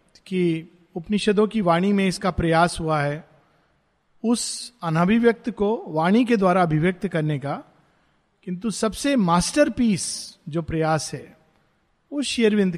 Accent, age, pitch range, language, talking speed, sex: native, 50-69, 180-240 Hz, Hindi, 120 wpm, male